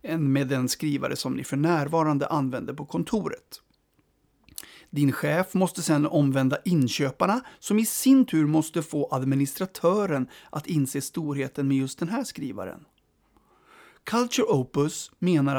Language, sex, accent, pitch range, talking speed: Swedish, male, native, 140-185 Hz, 135 wpm